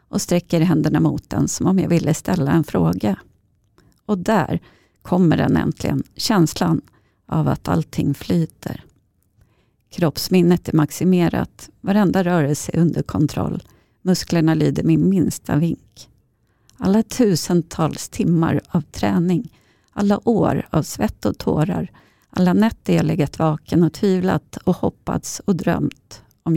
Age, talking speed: 40-59, 130 wpm